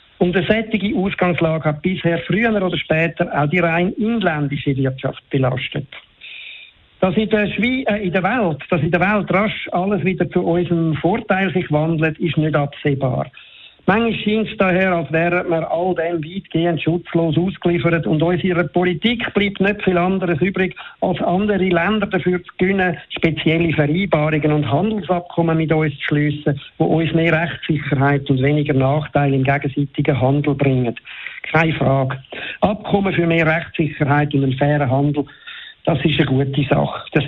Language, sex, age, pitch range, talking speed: German, male, 50-69, 150-190 Hz, 155 wpm